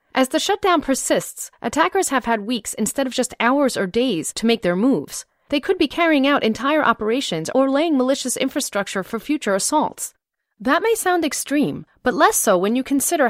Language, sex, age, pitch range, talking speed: English, female, 30-49, 200-290 Hz, 190 wpm